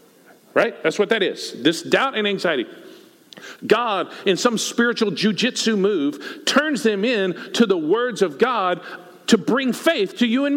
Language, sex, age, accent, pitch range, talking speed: English, male, 50-69, American, 210-285 Hz, 165 wpm